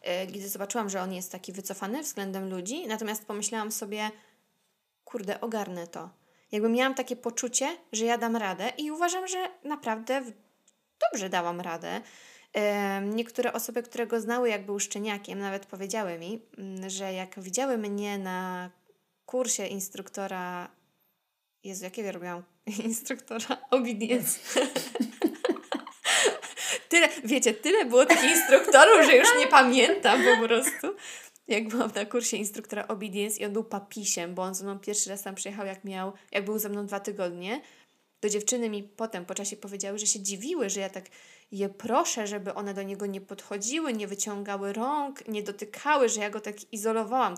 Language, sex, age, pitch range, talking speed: Polish, female, 20-39, 195-245 Hz, 150 wpm